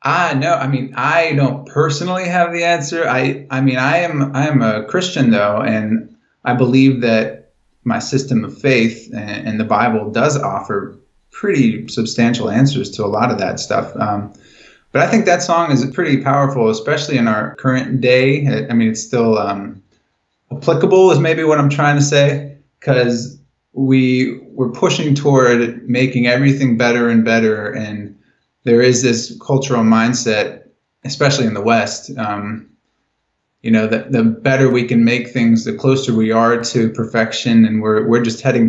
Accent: American